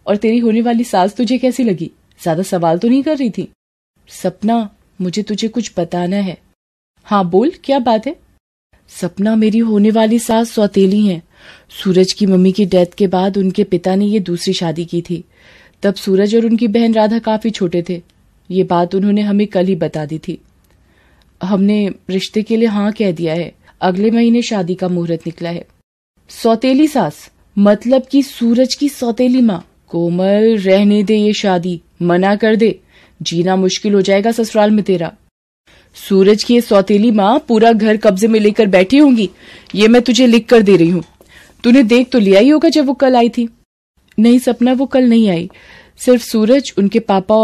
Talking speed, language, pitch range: 180 wpm, Hindi, 180-230 Hz